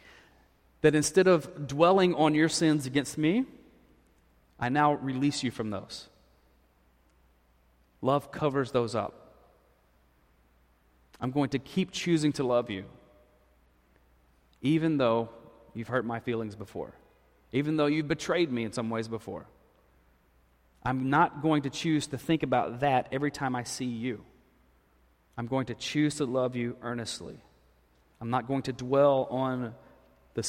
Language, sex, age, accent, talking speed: English, male, 30-49, American, 140 wpm